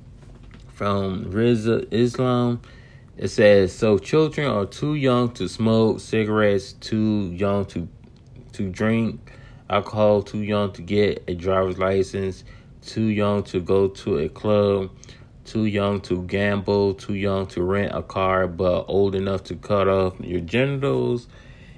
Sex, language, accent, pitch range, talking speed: male, English, American, 95-120 Hz, 145 wpm